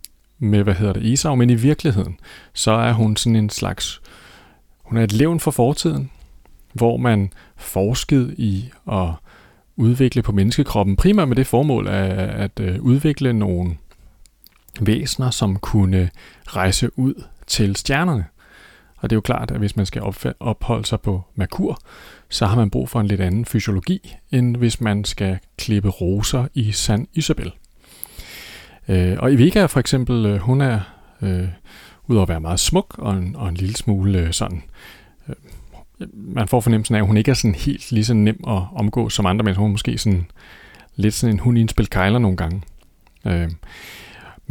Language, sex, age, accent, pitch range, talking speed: Danish, male, 30-49, native, 95-120 Hz, 165 wpm